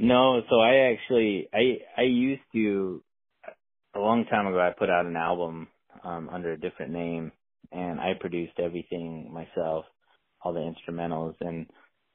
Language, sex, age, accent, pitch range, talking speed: English, male, 20-39, American, 80-90 Hz, 155 wpm